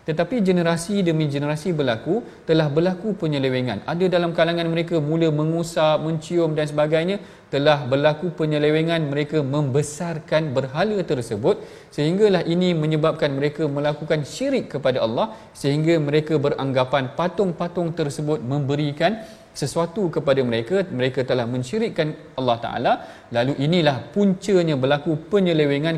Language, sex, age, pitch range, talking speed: Malayalam, male, 40-59, 145-180 Hz, 120 wpm